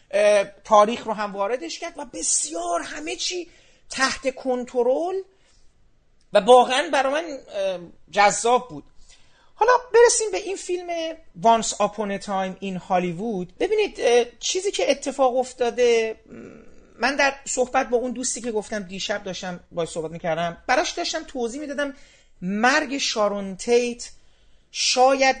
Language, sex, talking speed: Persian, male, 130 wpm